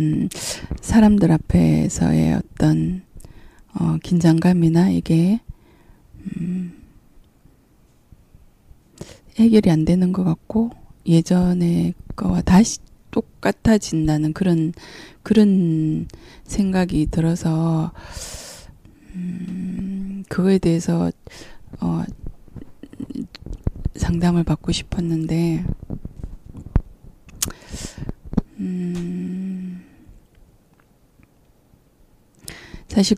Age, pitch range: 20-39, 160-190 Hz